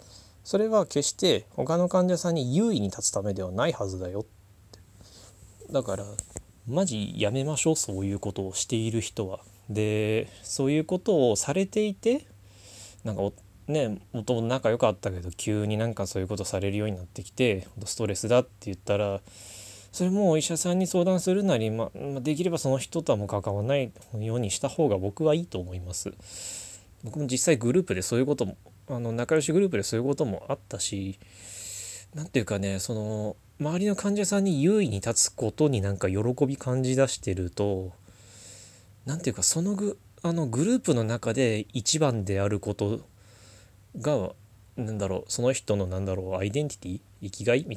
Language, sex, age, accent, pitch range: Japanese, male, 20-39, native, 100-135 Hz